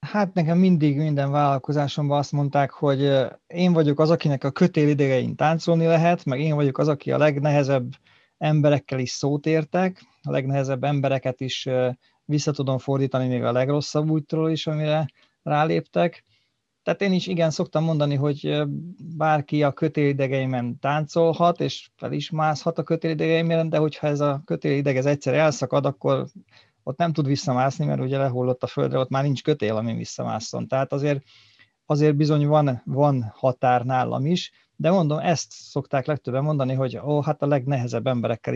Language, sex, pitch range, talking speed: Hungarian, male, 135-155 Hz, 160 wpm